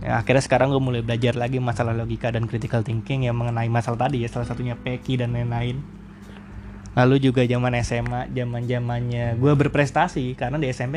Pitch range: 120-140 Hz